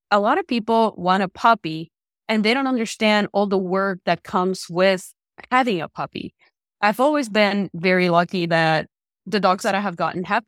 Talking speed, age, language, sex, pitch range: 190 wpm, 30-49, English, female, 175-215 Hz